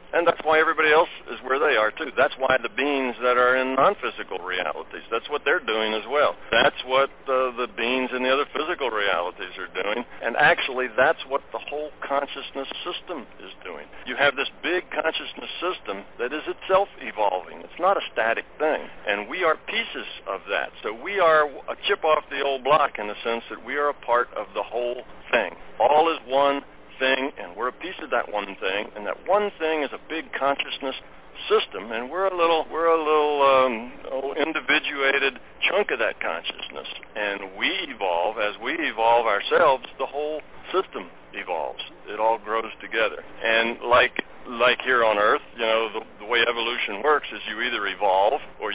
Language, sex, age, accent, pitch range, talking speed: English, male, 60-79, American, 125-155 Hz, 195 wpm